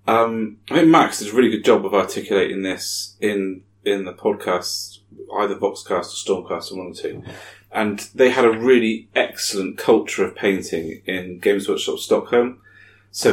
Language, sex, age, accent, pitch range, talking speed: English, male, 30-49, British, 100-140 Hz, 175 wpm